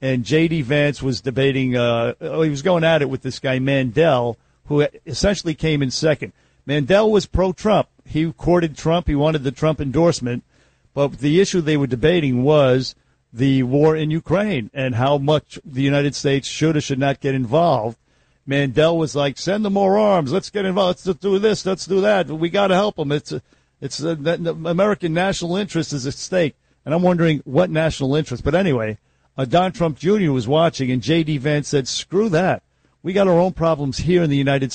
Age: 50-69